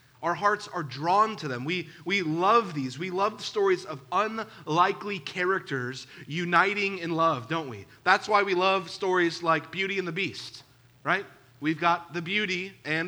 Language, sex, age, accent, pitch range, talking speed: English, male, 30-49, American, 155-200 Hz, 175 wpm